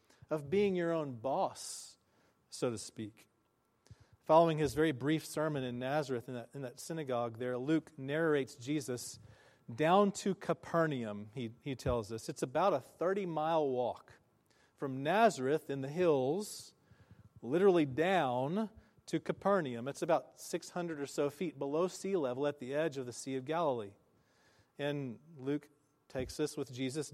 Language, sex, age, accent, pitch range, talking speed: English, male, 40-59, American, 130-160 Hz, 150 wpm